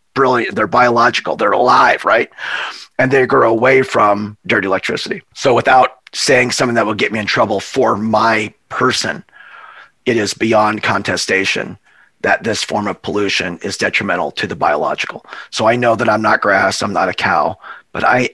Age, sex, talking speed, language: 30-49, male, 175 wpm, English